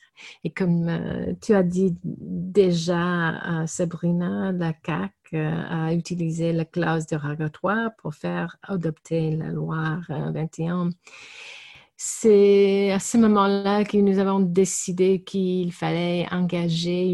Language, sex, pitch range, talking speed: French, female, 165-200 Hz, 130 wpm